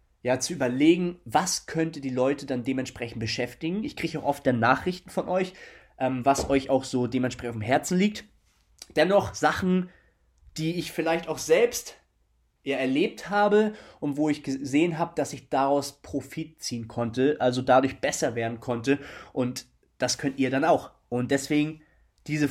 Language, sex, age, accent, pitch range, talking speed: German, male, 20-39, German, 130-170 Hz, 165 wpm